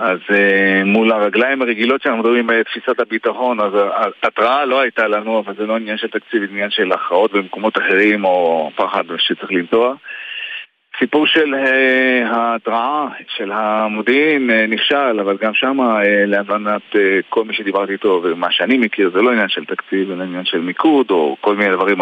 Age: 40-59